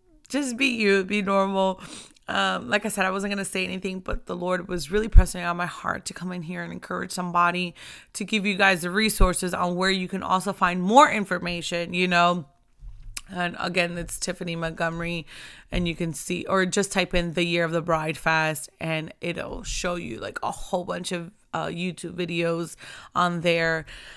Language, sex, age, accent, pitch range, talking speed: English, female, 20-39, American, 170-190 Hz, 200 wpm